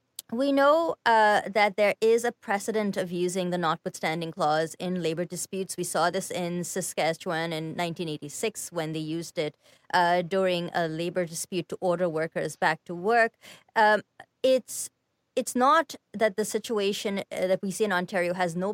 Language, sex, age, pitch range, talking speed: English, female, 30-49, 180-220 Hz, 165 wpm